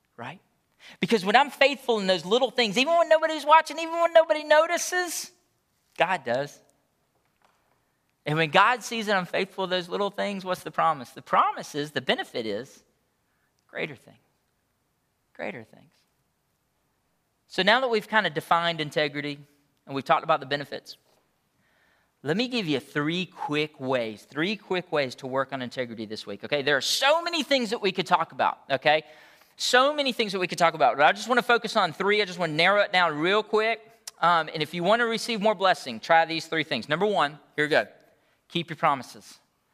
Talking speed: 200 wpm